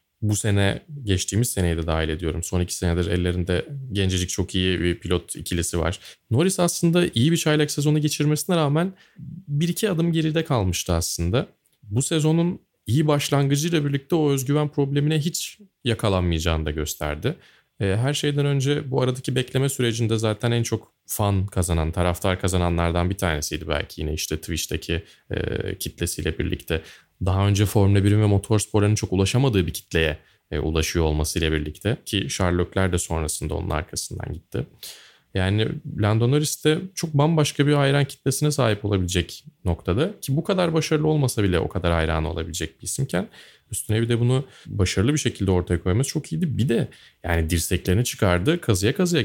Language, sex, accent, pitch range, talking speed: Turkish, male, native, 90-145 Hz, 155 wpm